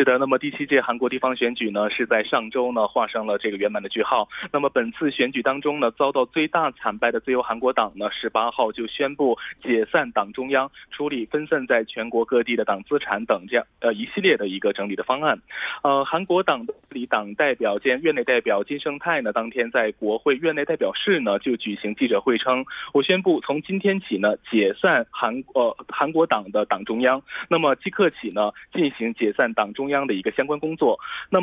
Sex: male